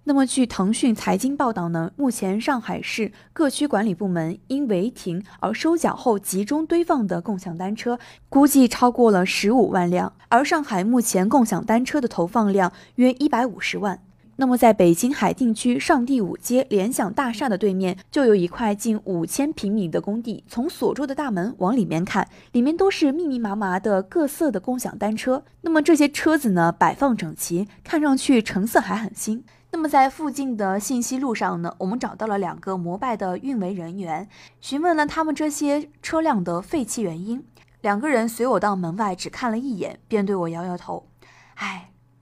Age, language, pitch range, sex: 20-39, Chinese, 195-275 Hz, female